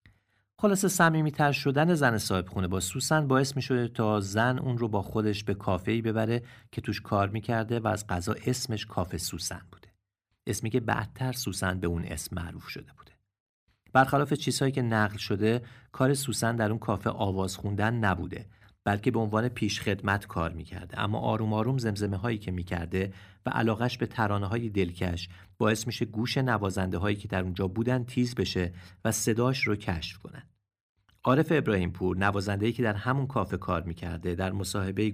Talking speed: 170 wpm